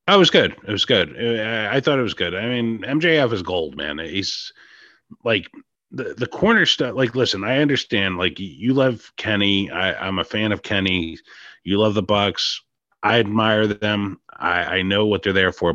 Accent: American